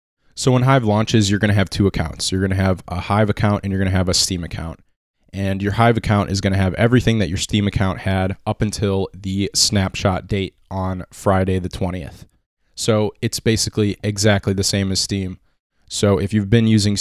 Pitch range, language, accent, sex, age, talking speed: 95-105 Hz, English, American, male, 20-39, 215 wpm